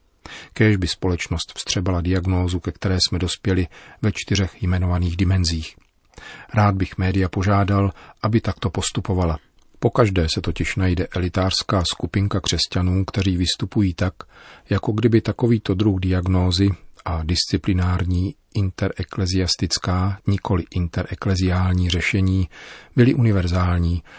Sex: male